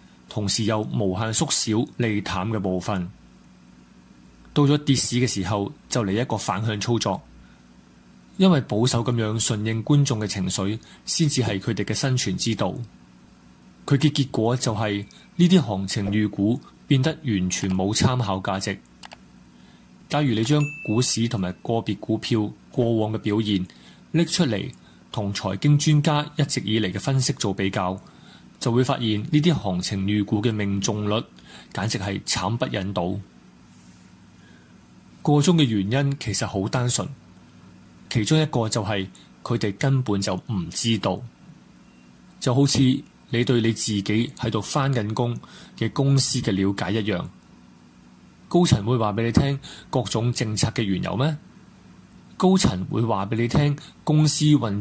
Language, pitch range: Chinese, 95-135 Hz